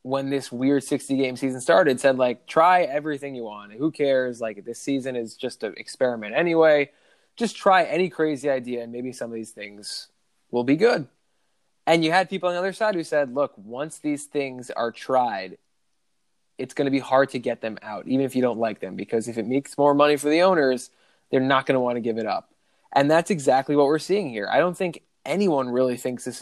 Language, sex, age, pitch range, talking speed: English, male, 20-39, 120-155 Hz, 225 wpm